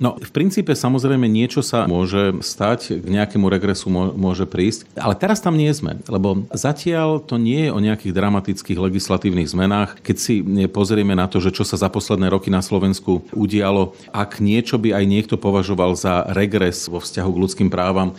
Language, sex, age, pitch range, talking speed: Slovak, male, 40-59, 95-125 Hz, 180 wpm